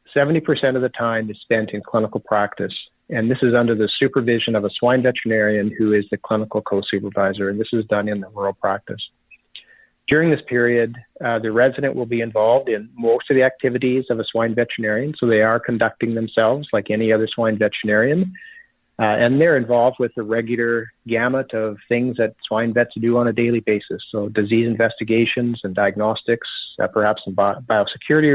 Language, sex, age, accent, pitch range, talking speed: English, male, 40-59, American, 105-120 Hz, 180 wpm